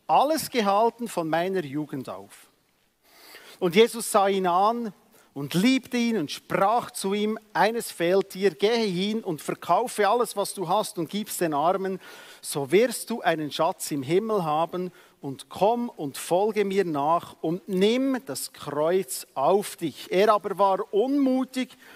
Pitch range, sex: 180-245 Hz, male